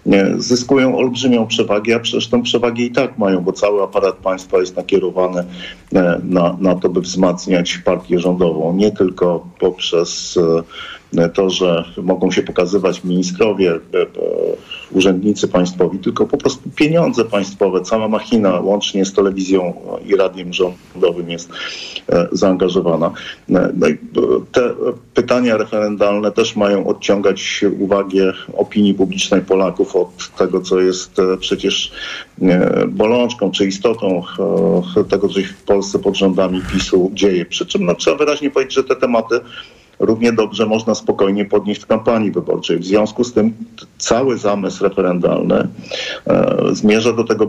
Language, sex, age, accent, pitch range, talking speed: Polish, male, 50-69, native, 90-115 Hz, 130 wpm